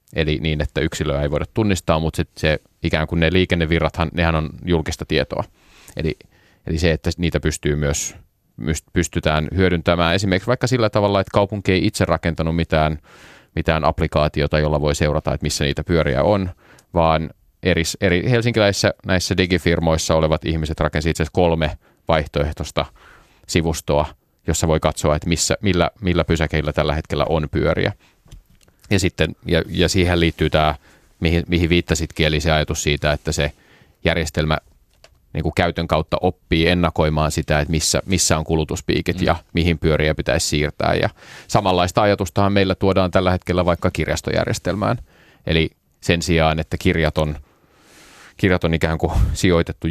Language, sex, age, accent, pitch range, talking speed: Finnish, male, 30-49, native, 75-90 Hz, 145 wpm